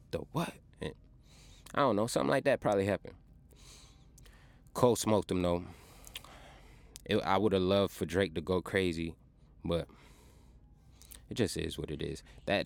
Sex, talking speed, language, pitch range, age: male, 150 wpm, English, 80-95 Hz, 20-39